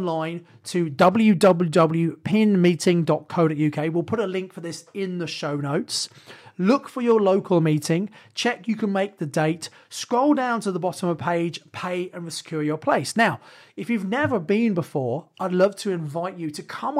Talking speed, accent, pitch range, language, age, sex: 175 wpm, British, 160-200 Hz, English, 30-49, male